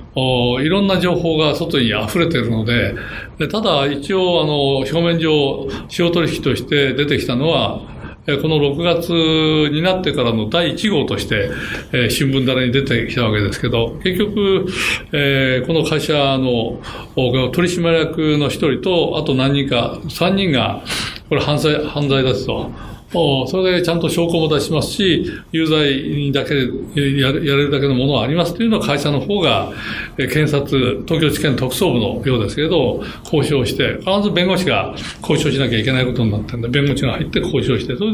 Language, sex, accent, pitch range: Japanese, male, native, 125-165 Hz